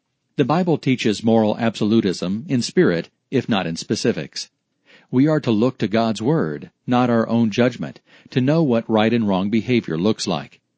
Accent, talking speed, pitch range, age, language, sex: American, 175 wpm, 110-135 Hz, 50-69, English, male